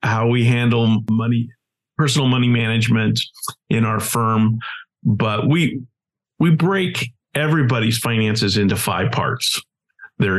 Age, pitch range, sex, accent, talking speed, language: 50-69, 110-145 Hz, male, American, 115 wpm, English